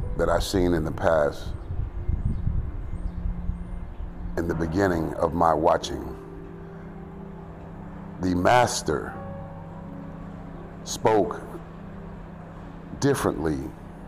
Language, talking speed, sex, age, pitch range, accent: English, 70 wpm, male, 60-79, 75-100 Hz, American